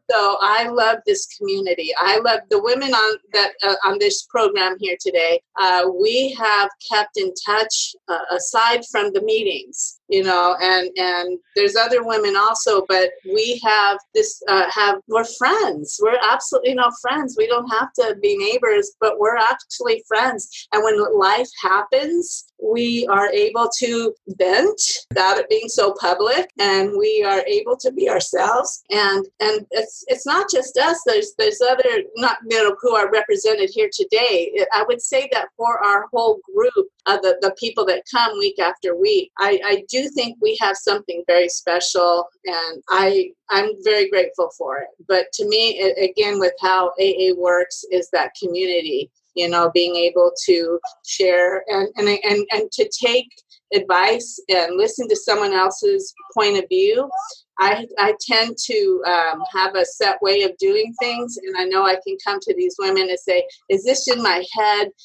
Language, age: English, 30-49